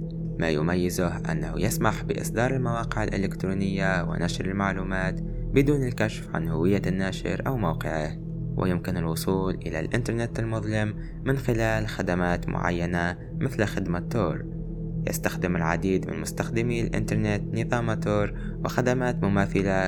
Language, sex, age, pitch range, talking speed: Arabic, male, 20-39, 95-155 Hz, 110 wpm